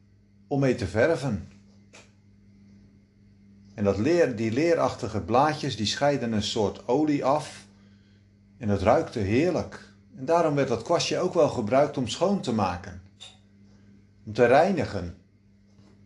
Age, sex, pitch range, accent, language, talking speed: 50-69, male, 100-130 Hz, Dutch, Dutch, 130 wpm